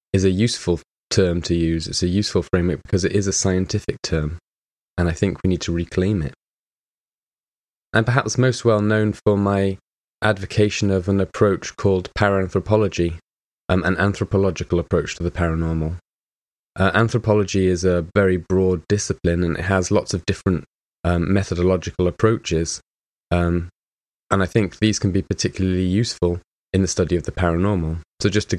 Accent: British